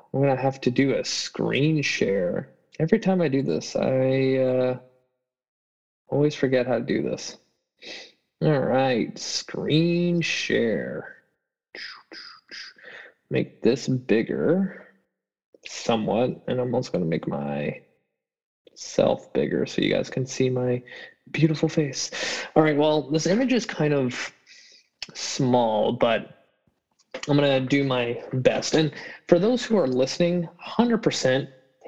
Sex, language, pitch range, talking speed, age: male, English, 120-145 Hz, 130 wpm, 20-39